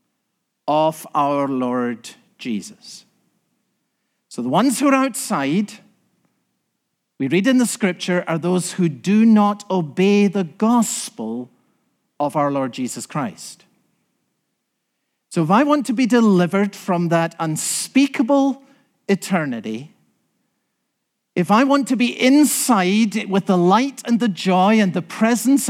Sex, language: male, English